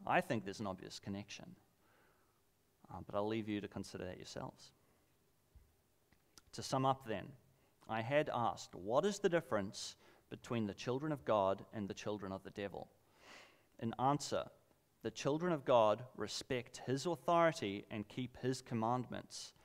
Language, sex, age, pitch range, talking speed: English, male, 30-49, 100-135 Hz, 155 wpm